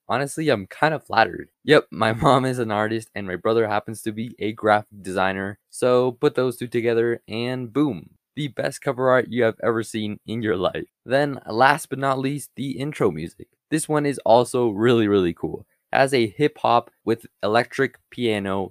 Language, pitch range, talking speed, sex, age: English, 110-140 Hz, 190 wpm, male, 20-39